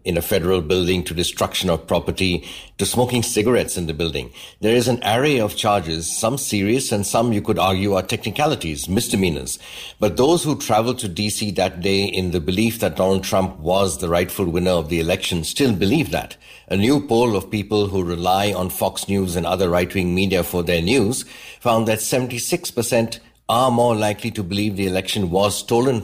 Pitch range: 90-110 Hz